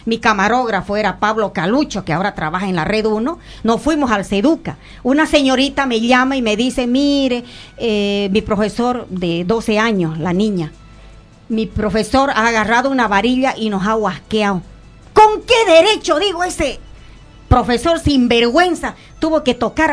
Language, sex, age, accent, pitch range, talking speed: Spanish, female, 40-59, American, 200-285 Hz, 160 wpm